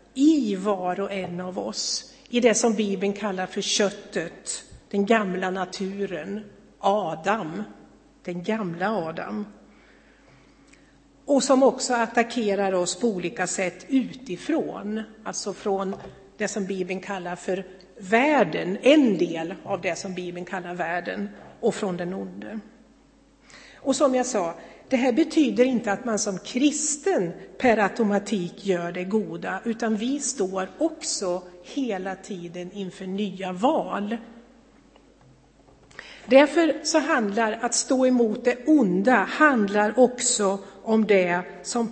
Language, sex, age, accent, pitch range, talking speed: Swedish, female, 60-79, native, 185-245 Hz, 125 wpm